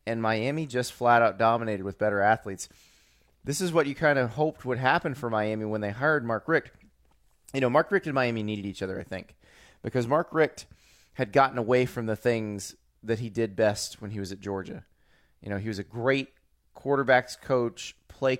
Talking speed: 200 wpm